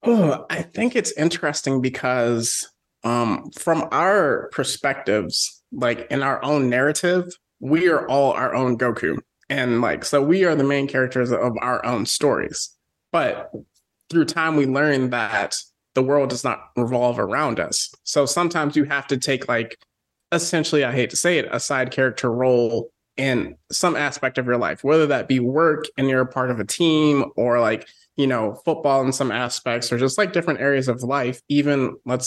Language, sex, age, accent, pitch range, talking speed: English, male, 20-39, American, 125-145 Hz, 180 wpm